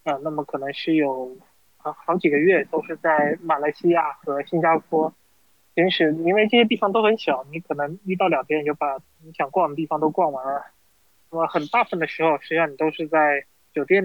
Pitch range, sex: 145-170 Hz, male